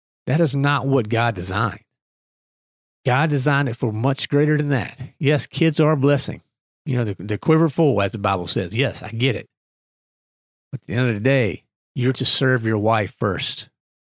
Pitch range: 110-145 Hz